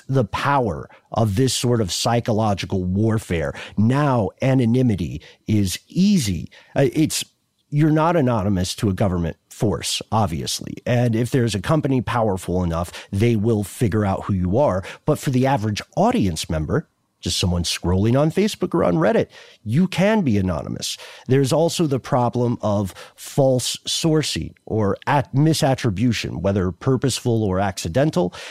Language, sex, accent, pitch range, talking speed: English, male, American, 100-145 Hz, 140 wpm